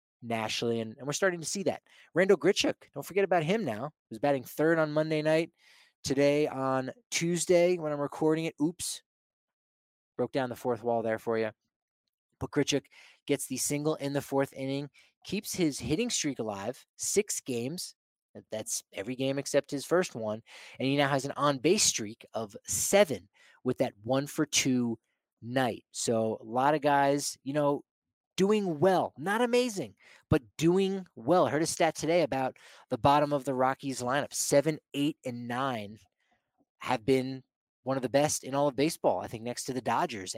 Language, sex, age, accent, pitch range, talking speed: English, male, 20-39, American, 125-150 Hz, 180 wpm